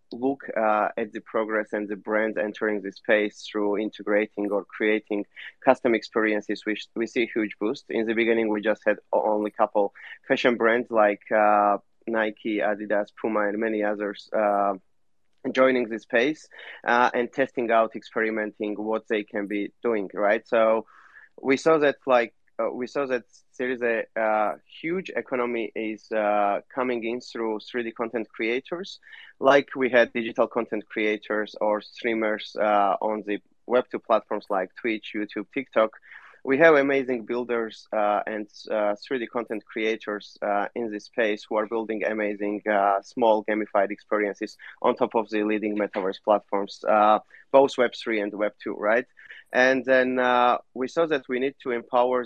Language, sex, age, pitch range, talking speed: English, male, 20-39, 105-120 Hz, 165 wpm